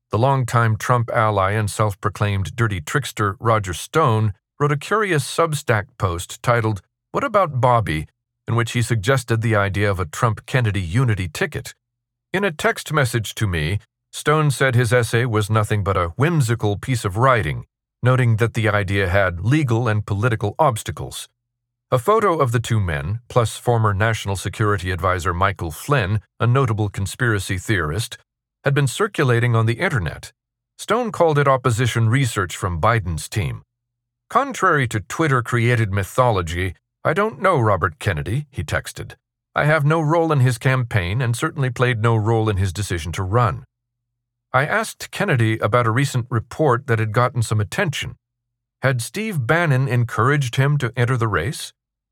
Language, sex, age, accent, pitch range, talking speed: English, male, 40-59, American, 110-130 Hz, 160 wpm